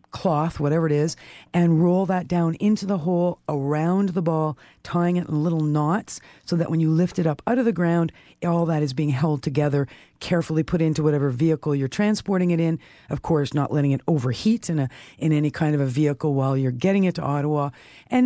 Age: 50-69